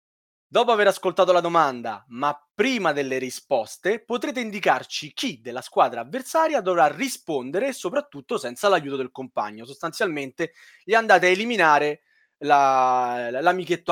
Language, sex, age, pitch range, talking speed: Italian, male, 30-49, 135-210 Hz, 120 wpm